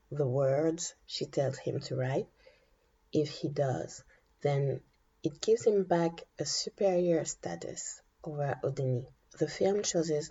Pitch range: 155-180 Hz